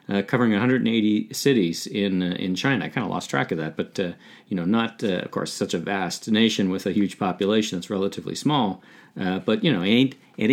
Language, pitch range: English, 90-120 Hz